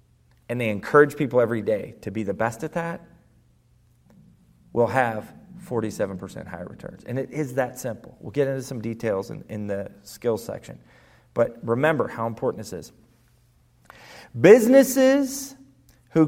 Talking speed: 150 wpm